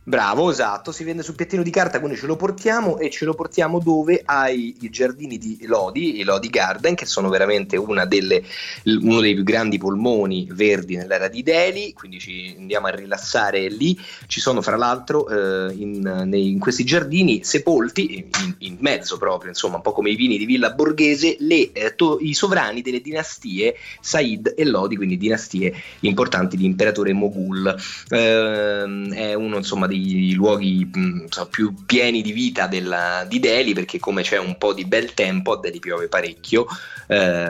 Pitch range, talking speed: 95-155 Hz, 180 wpm